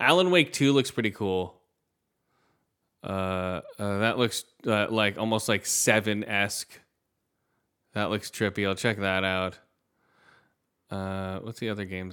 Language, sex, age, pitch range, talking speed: English, male, 20-39, 95-120 Hz, 135 wpm